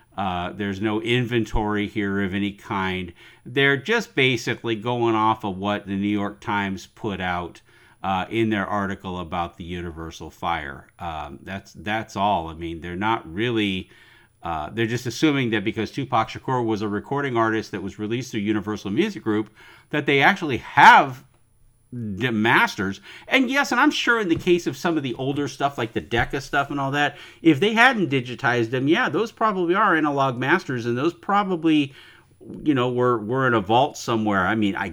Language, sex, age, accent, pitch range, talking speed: English, male, 50-69, American, 100-135 Hz, 185 wpm